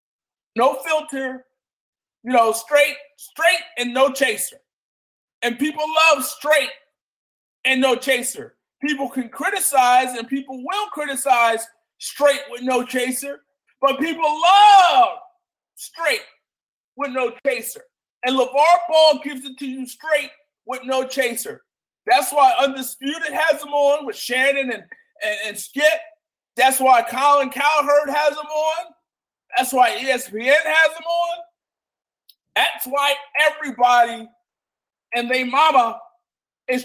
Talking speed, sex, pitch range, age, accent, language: 125 wpm, male, 240-305 Hz, 40-59, American, English